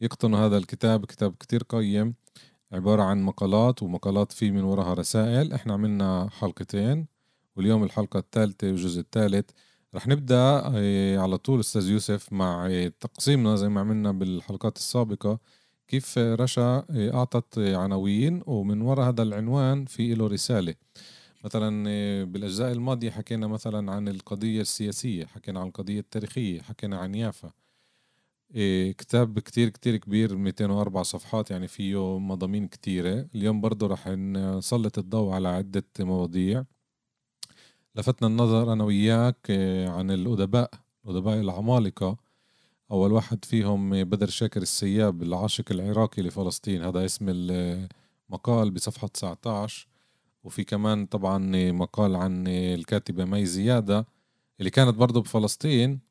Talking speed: 120 wpm